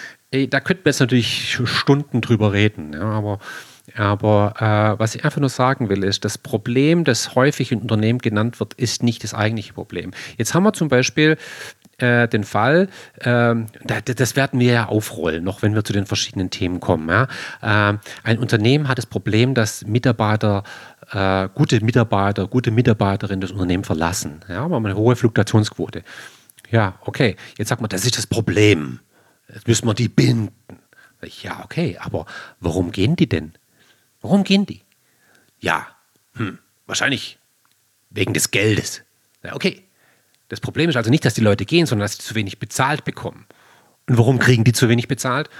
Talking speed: 170 wpm